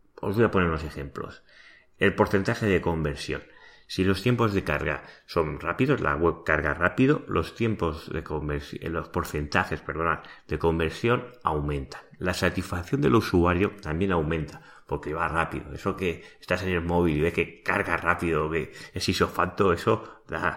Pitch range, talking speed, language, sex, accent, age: 80-100 Hz, 165 wpm, Spanish, male, Spanish, 30-49